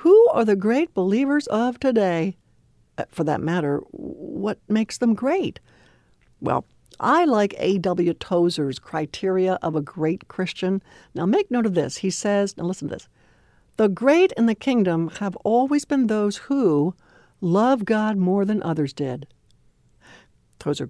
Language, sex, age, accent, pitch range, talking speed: English, female, 60-79, American, 175-240 Hz, 150 wpm